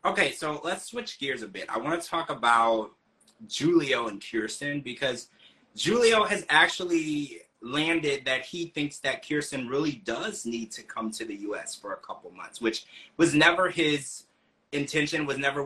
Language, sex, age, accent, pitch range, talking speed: English, male, 30-49, American, 120-155 Hz, 170 wpm